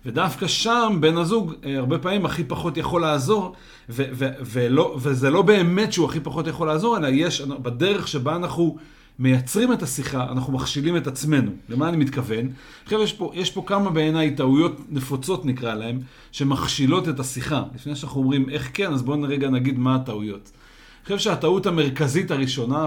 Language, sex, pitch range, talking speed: Hebrew, male, 130-165 Hz, 170 wpm